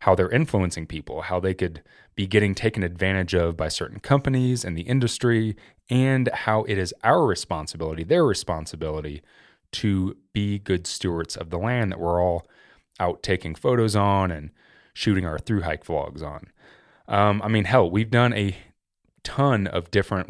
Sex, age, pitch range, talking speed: male, 20-39, 90-110 Hz, 165 wpm